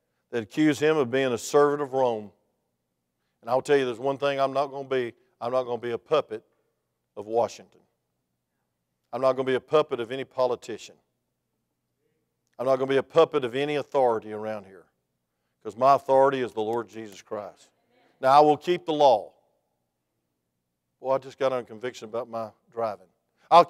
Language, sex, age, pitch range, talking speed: English, male, 50-69, 120-165 Hz, 195 wpm